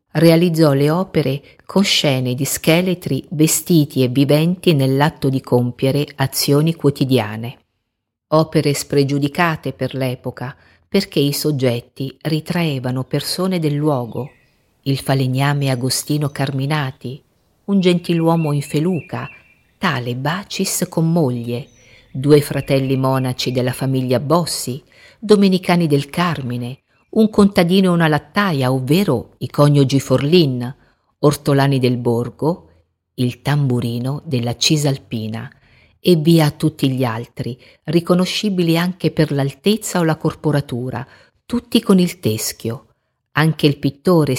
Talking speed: 110 wpm